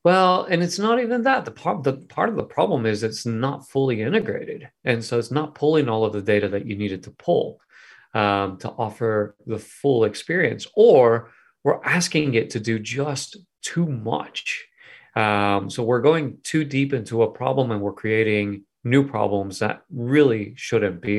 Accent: American